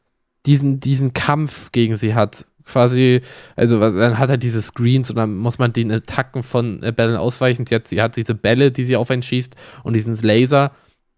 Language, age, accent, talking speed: German, 20-39, German, 200 wpm